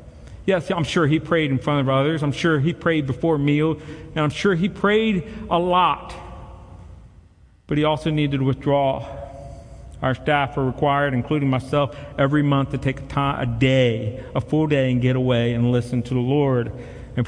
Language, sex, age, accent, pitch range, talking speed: English, male, 40-59, American, 125-150 Hz, 190 wpm